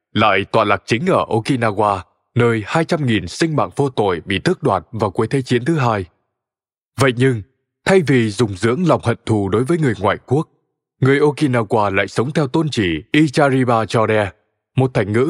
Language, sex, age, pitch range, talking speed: Vietnamese, male, 20-39, 105-140 Hz, 185 wpm